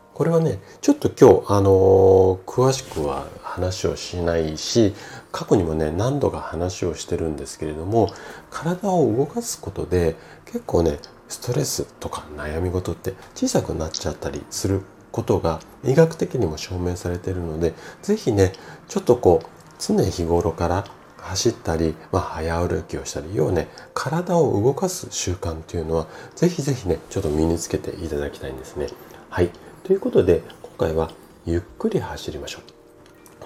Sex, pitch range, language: male, 80-125 Hz, Japanese